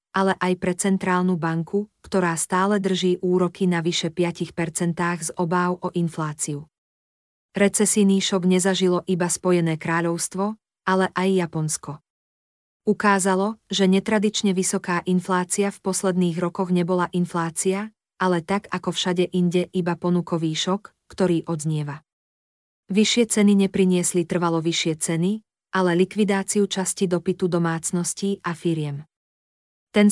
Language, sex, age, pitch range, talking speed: Slovak, female, 40-59, 170-195 Hz, 120 wpm